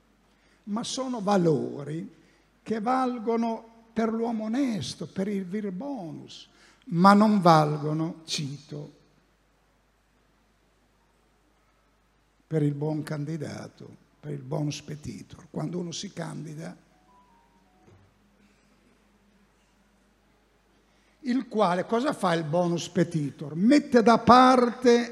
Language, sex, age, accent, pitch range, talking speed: Italian, male, 60-79, native, 170-225 Hz, 90 wpm